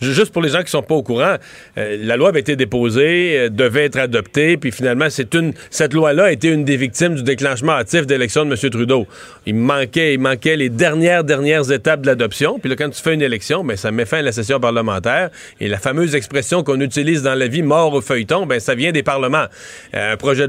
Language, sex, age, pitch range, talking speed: French, male, 40-59, 135-165 Hz, 245 wpm